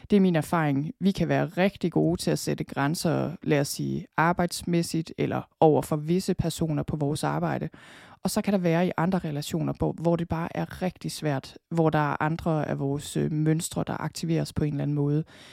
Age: 20-39